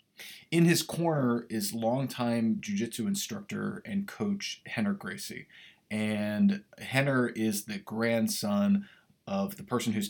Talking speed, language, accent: 120 wpm, English, American